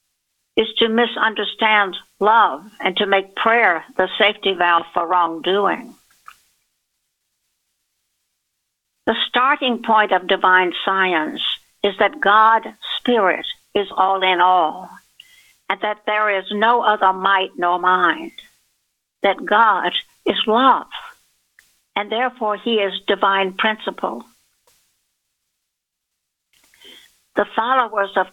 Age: 60-79